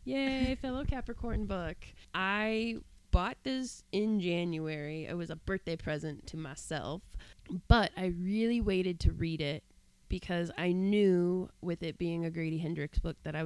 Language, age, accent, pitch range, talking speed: English, 20-39, American, 165-210 Hz, 155 wpm